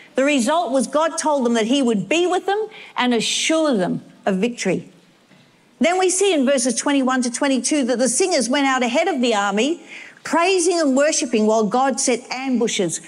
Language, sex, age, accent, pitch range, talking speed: English, female, 50-69, Australian, 215-295 Hz, 190 wpm